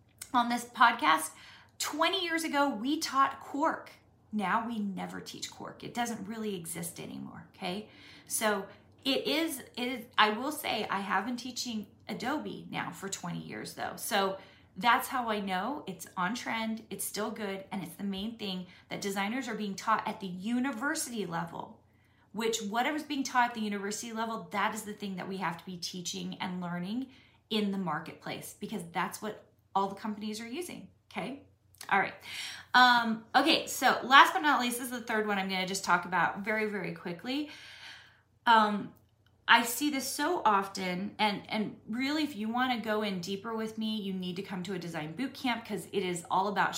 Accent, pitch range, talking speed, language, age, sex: American, 185-240 Hz, 190 wpm, English, 30-49, female